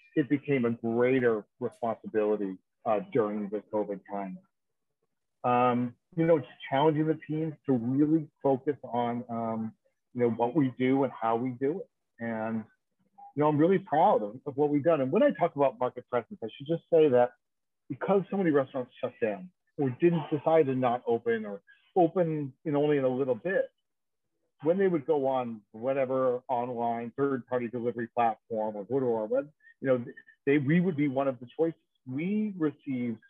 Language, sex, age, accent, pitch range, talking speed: English, male, 50-69, American, 120-160 Hz, 185 wpm